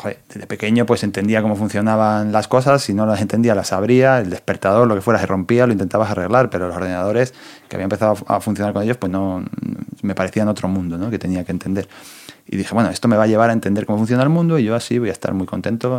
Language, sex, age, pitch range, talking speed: Spanish, male, 30-49, 95-115 Hz, 250 wpm